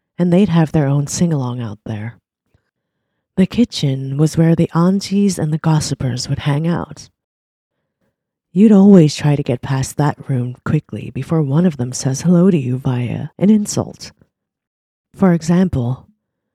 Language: English